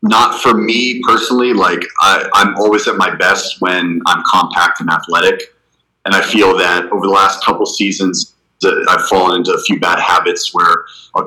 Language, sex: English, male